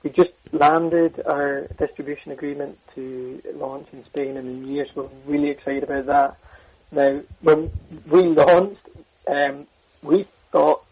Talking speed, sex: 150 wpm, male